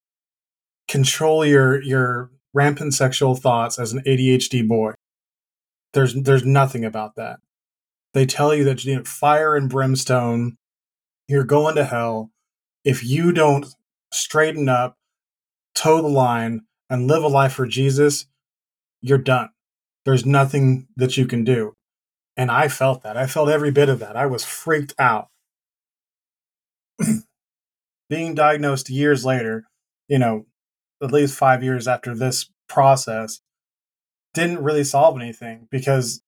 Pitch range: 125-145 Hz